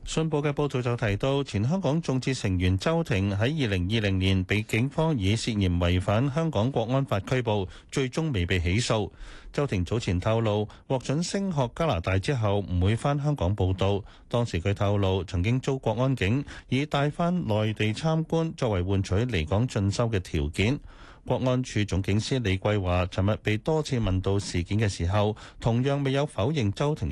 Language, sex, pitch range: Chinese, male, 95-130 Hz